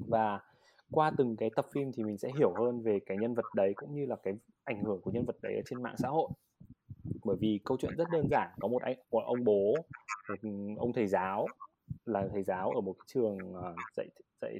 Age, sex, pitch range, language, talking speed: 20-39, male, 105-130 Hz, Vietnamese, 220 wpm